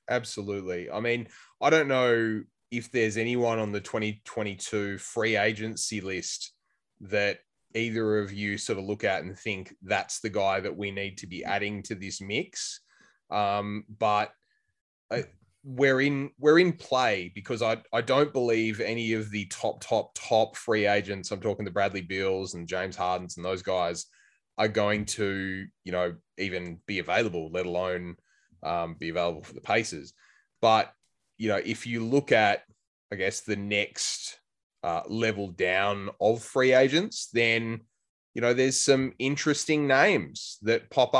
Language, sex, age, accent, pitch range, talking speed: English, male, 20-39, Australian, 100-125 Hz, 160 wpm